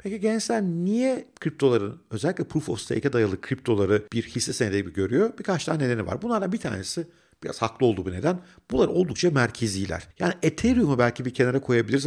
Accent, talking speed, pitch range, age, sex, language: native, 180 wpm, 100-155 Hz, 50-69, male, Turkish